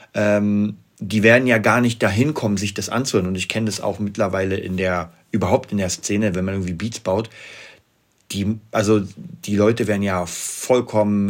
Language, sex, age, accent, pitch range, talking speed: German, male, 40-59, German, 100-115 Hz, 180 wpm